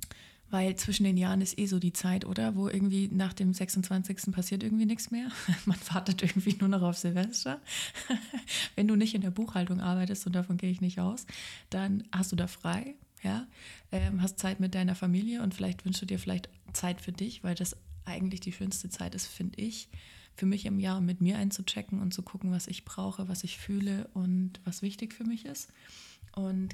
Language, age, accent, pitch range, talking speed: German, 20-39, German, 175-195 Hz, 200 wpm